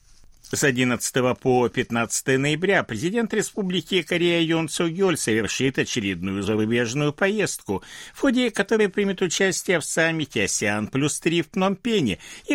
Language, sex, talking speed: Russian, male, 130 wpm